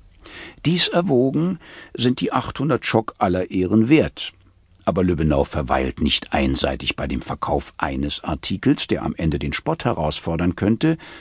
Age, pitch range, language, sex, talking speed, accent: 60-79, 75-105 Hz, German, male, 140 wpm, German